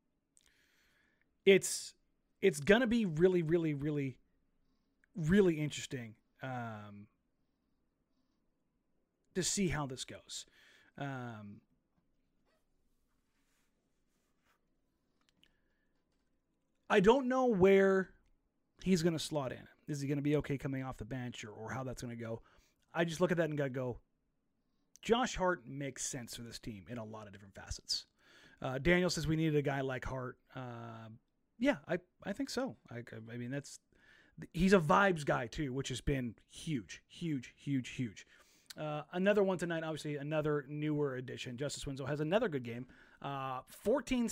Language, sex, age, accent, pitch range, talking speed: English, male, 30-49, American, 130-175 Hz, 150 wpm